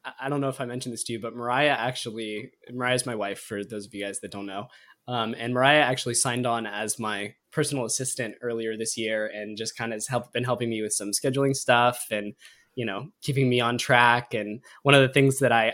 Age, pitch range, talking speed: 20-39, 115-135 Hz, 240 wpm